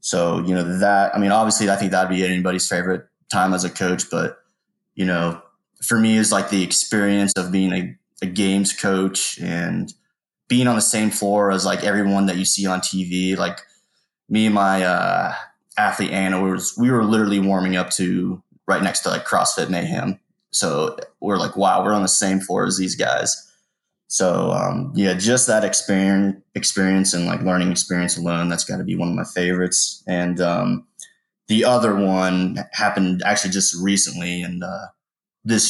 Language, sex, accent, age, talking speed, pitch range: English, male, American, 20-39, 185 wpm, 90-105 Hz